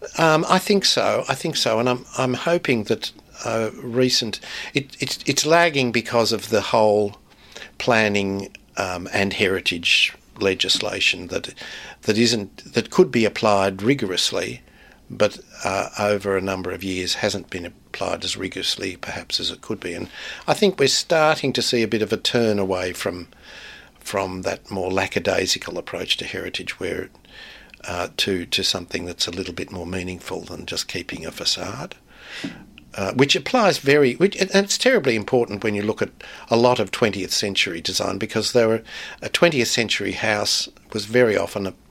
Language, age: English, 60-79